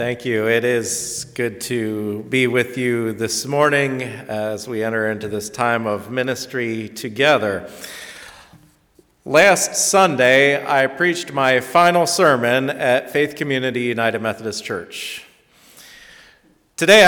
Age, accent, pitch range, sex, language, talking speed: 40-59, American, 120-165 Hz, male, English, 120 wpm